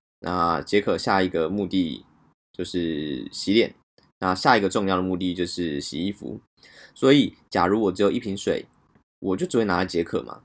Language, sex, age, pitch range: Chinese, male, 20-39, 90-110 Hz